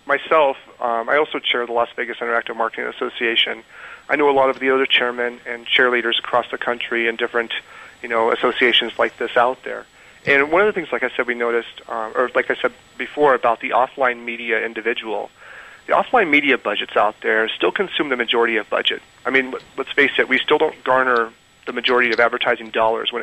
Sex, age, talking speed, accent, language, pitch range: male, 40-59, 210 wpm, American, English, 115-130 Hz